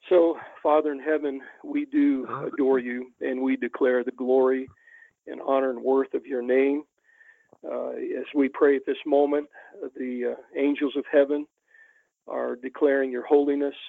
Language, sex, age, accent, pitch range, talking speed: English, male, 40-59, American, 130-180 Hz, 155 wpm